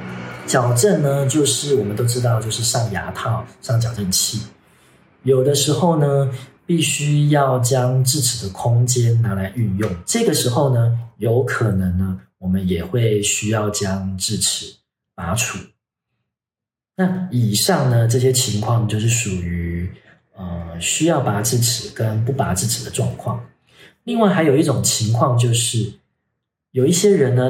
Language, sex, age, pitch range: Chinese, male, 40-59, 100-135 Hz